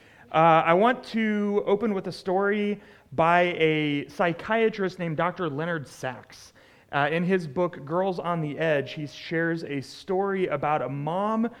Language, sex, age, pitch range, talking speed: English, male, 30-49, 145-185 Hz, 150 wpm